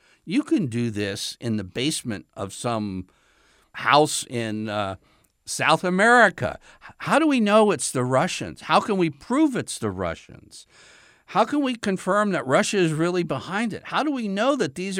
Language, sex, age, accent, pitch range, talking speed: English, male, 60-79, American, 100-170 Hz, 175 wpm